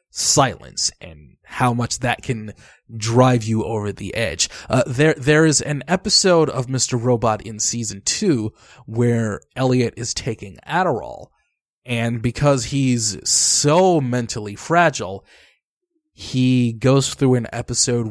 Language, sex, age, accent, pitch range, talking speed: English, male, 20-39, American, 110-135 Hz, 130 wpm